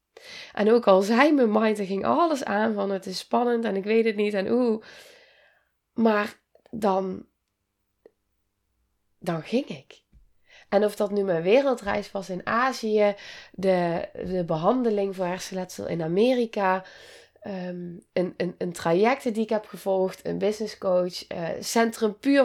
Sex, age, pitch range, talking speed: female, 20-39, 185-230 Hz, 150 wpm